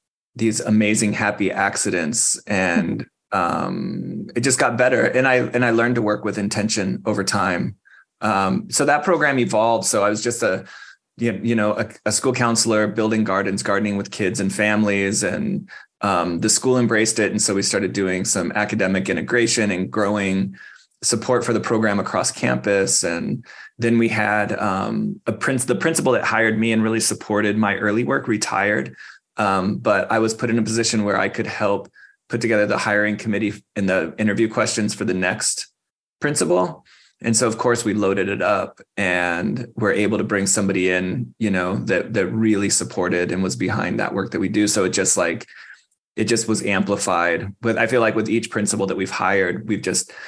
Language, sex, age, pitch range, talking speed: English, male, 20-39, 100-115 Hz, 190 wpm